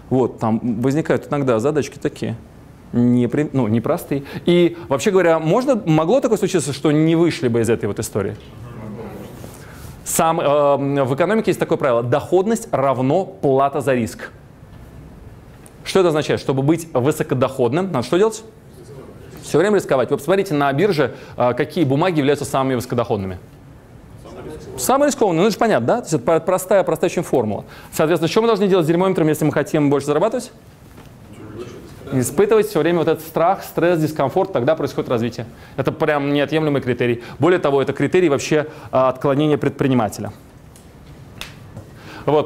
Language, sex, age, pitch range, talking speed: Russian, male, 20-39, 135-170 Hz, 150 wpm